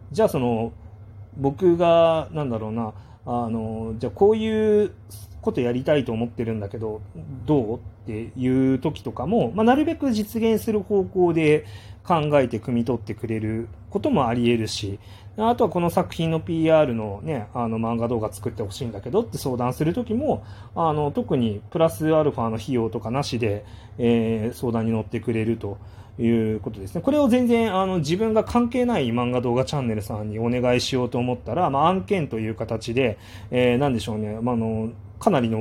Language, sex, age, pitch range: Japanese, male, 30-49, 110-160 Hz